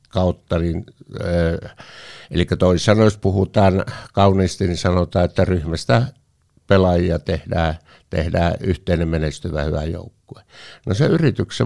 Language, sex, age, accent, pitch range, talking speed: Finnish, male, 60-79, native, 85-110 Hz, 100 wpm